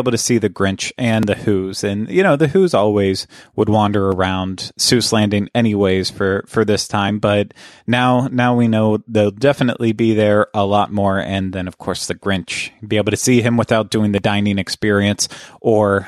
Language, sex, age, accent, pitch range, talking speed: English, male, 20-39, American, 100-120 Hz, 200 wpm